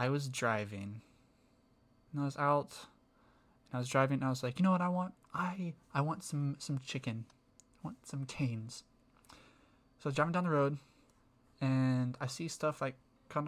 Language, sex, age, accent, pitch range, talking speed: English, male, 20-39, American, 125-150 Hz, 190 wpm